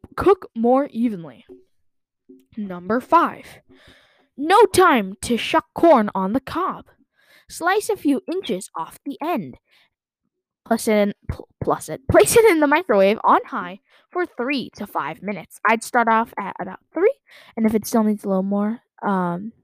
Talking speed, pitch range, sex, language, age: 155 wpm, 205-270 Hz, female, English, 10-29